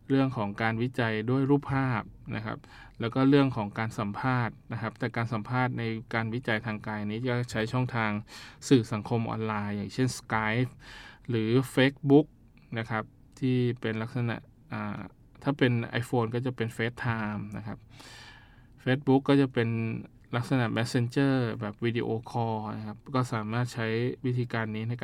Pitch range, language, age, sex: 110-125 Hz, Thai, 20-39, male